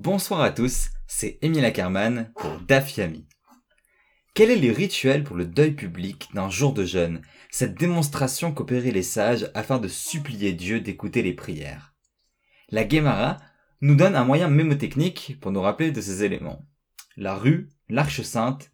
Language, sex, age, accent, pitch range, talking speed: French, male, 20-39, French, 105-155 Hz, 155 wpm